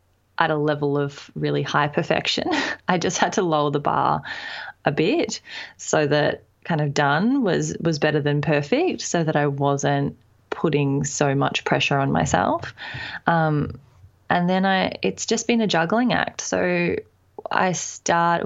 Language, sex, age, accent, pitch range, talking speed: English, female, 20-39, Australian, 145-180 Hz, 160 wpm